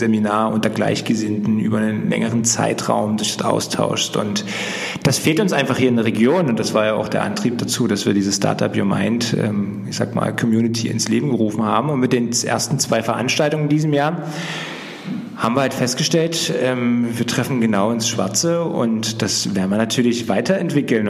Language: German